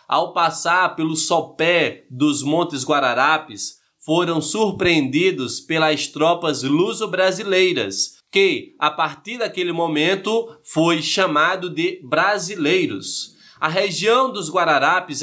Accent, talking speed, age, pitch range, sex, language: Brazilian, 100 wpm, 20-39, 155-190 Hz, male, Portuguese